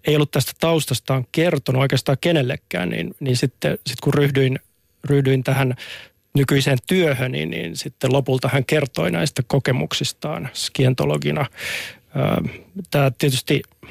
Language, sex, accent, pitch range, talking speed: Finnish, male, native, 135-150 Hz, 120 wpm